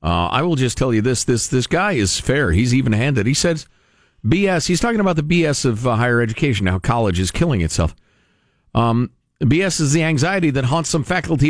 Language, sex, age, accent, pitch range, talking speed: English, male, 50-69, American, 100-160 Hz, 210 wpm